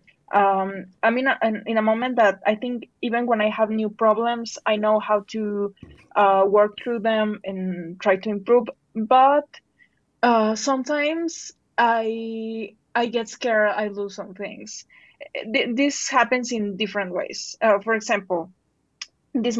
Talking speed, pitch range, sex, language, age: 145 wpm, 205-245 Hz, female, English, 20-39